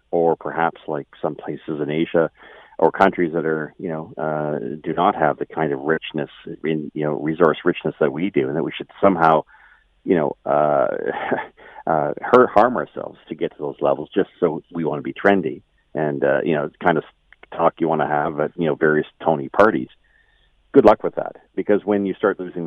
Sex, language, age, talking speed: male, English, 40-59, 205 wpm